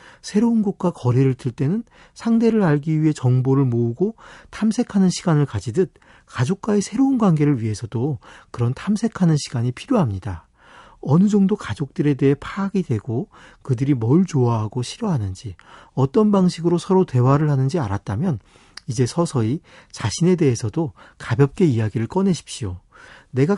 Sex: male